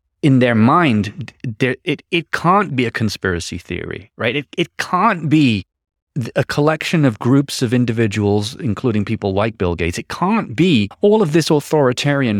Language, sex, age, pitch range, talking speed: English, male, 30-49, 95-125 Hz, 160 wpm